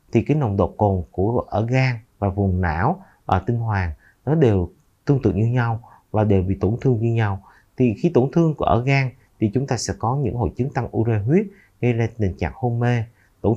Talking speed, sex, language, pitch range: 230 wpm, male, Vietnamese, 100-130 Hz